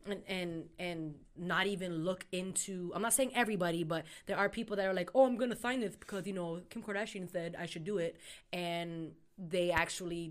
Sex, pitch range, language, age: female, 170-200 Hz, English, 20-39